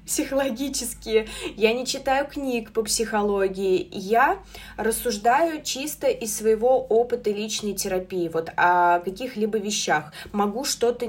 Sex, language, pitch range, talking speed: female, Russian, 195-260 Hz, 115 wpm